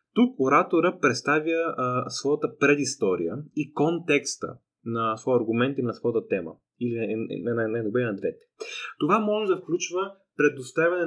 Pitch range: 120-150 Hz